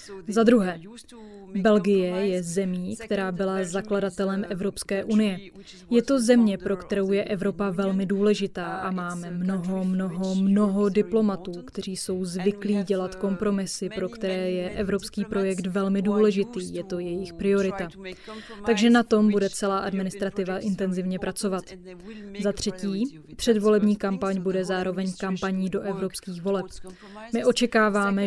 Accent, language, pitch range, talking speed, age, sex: native, Czech, 190-210 Hz, 130 wpm, 20-39, female